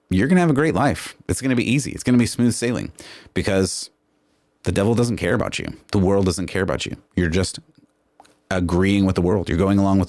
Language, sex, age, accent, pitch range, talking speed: English, male, 30-49, American, 90-115 Hz, 245 wpm